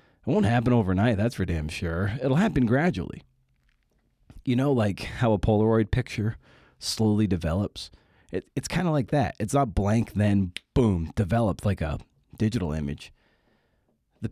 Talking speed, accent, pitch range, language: 150 wpm, American, 90-120 Hz, English